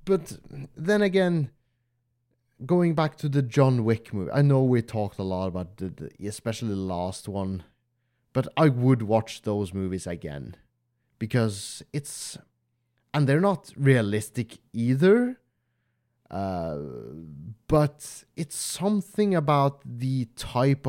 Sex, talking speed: male, 125 wpm